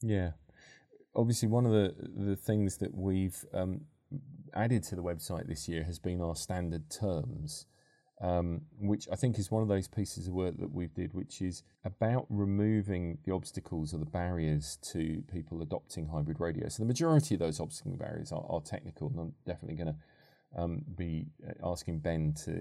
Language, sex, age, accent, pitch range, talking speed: English, male, 30-49, British, 80-105 Hz, 185 wpm